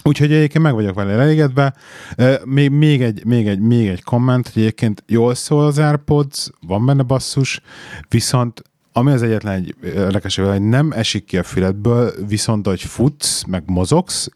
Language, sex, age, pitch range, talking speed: Hungarian, male, 30-49, 95-130 Hz, 165 wpm